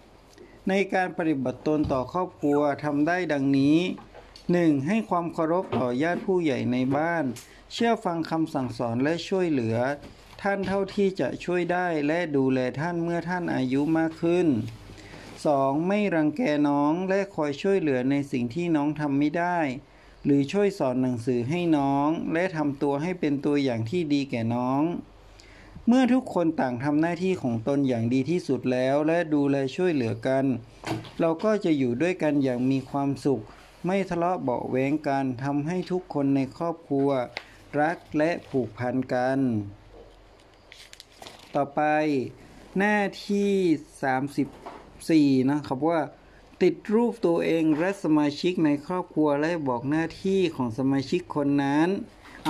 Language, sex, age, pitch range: Thai, male, 60-79, 135-175 Hz